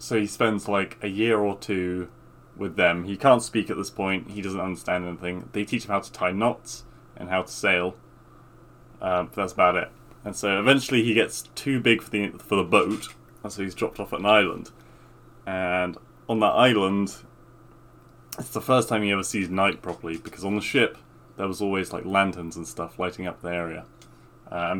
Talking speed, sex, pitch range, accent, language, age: 205 wpm, male, 95-115 Hz, British, English, 20-39